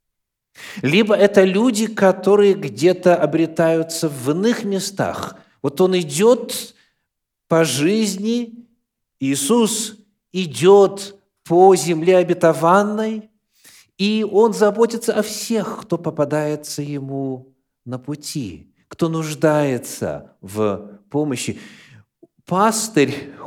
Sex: male